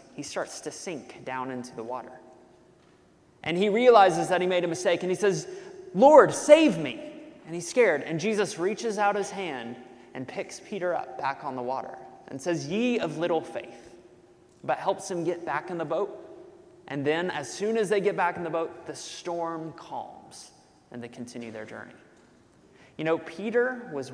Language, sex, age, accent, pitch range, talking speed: English, male, 20-39, American, 155-220 Hz, 190 wpm